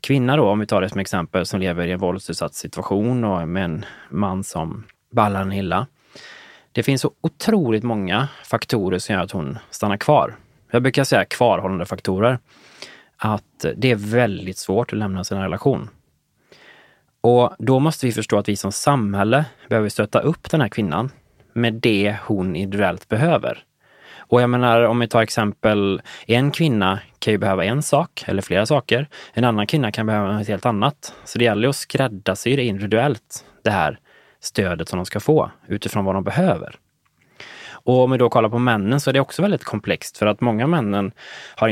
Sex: male